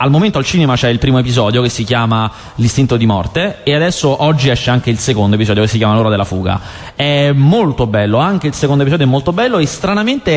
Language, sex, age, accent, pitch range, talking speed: Italian, male, 20-39, native, 120-175 Hz, 230 wpm